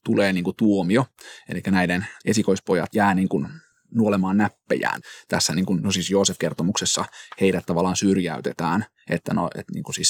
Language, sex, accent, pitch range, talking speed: Finnish, male, native, 95-105 Hz, 135 wpm